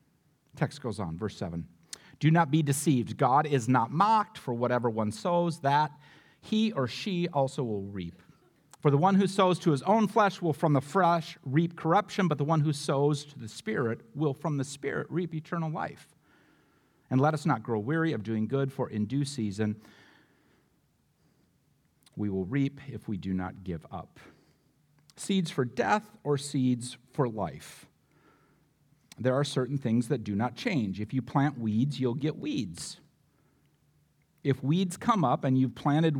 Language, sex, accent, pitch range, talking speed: English, male, American, 130-165 Hz, 175 wpm